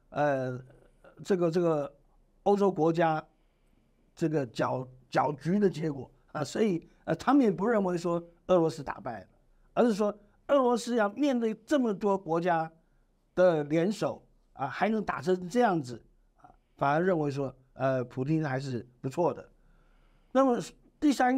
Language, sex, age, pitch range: Chinese, male, 60-79, 130-185 Hz